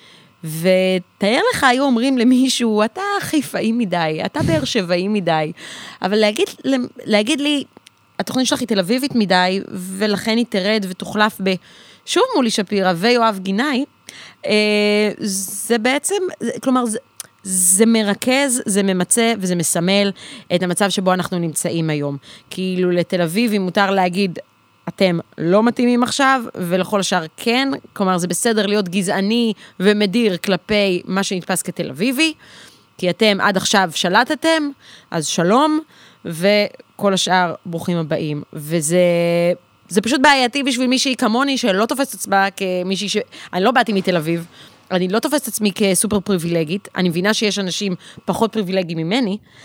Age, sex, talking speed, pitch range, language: 30-49, female, 135 wpm, 180-235 Hz, Hebrew